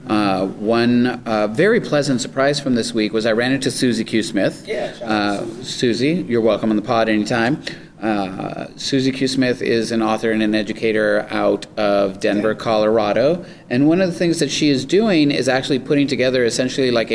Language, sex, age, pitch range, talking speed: English, male, 40-59, 115-145 Hz, 185 wpm